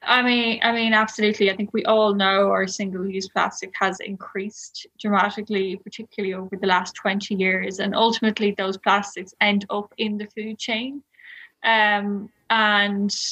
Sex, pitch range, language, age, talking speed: female, 195-220 Hz, English, 10-29, 155 wpm